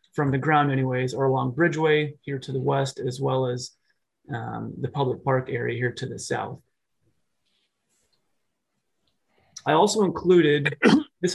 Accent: American